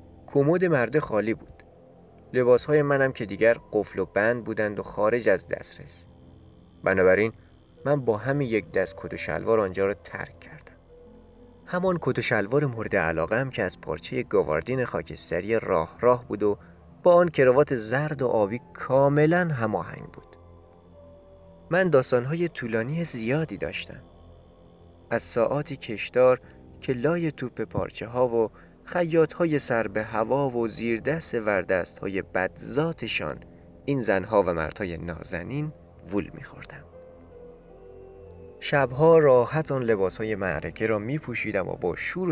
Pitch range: 85-140 Hz